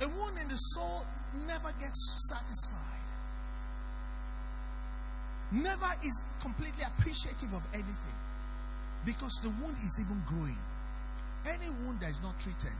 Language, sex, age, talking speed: English, male, 50-69, 120 wpm